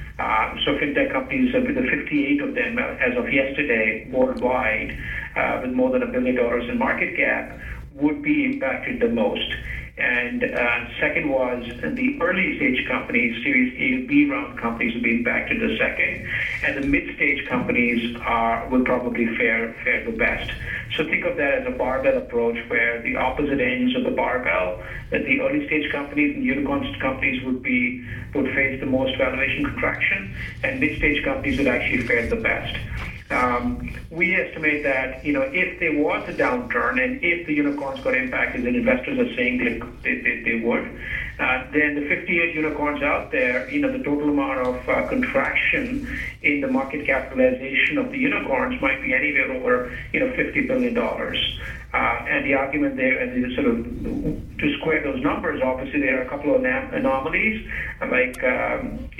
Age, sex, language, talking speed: 50-69, male, English, 180 wpm